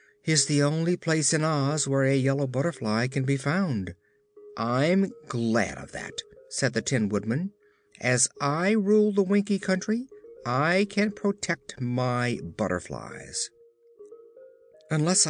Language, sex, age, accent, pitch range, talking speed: English, male, 60-79, American, 125-210 Hz, 130 wpm